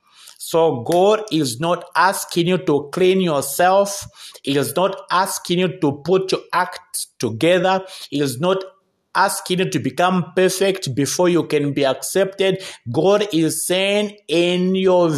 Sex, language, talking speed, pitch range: male, English, 145 wpm, 150-195 Hz